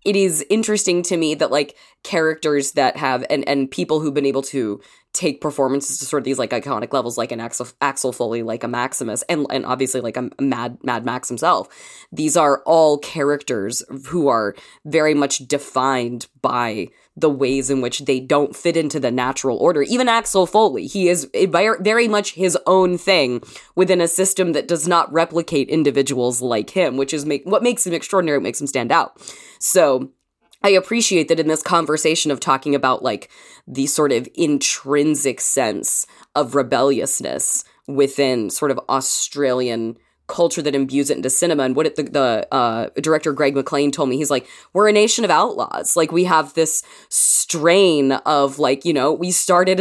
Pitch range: 135-175 Hz